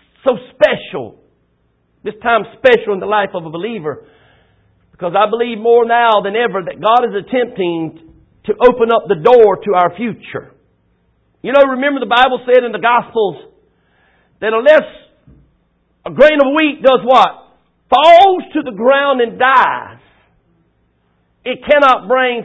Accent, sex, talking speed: American, male, 150 wpm